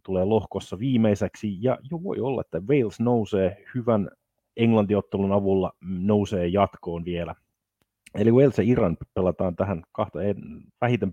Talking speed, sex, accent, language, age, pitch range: 130 wpm, male, native, Finnish, 30-49, 95-115 Hz